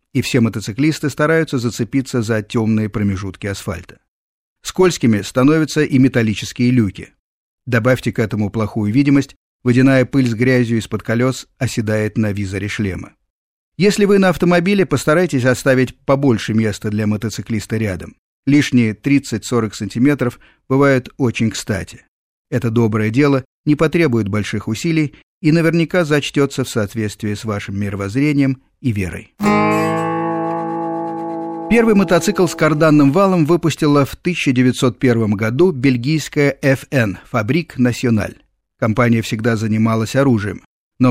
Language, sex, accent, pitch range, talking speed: Russian, male, native, 110-150 Hz, 120 wpm